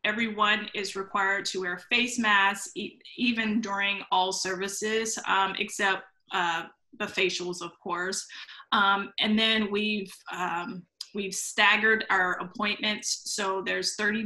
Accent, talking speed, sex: American, 125 wpm, female